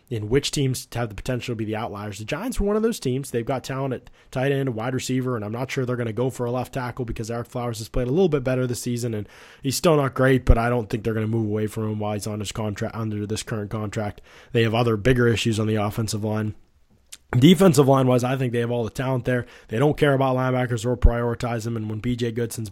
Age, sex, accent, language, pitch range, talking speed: 20-39, male, American, English, 110-130 Hz, 270 wpm